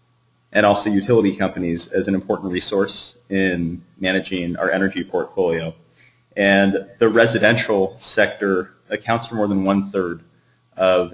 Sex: male